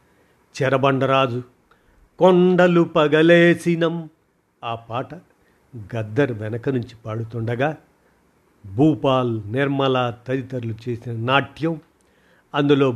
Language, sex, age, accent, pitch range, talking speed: Telugu, male, 50-69, native, 125-155 Hz, 70 wpm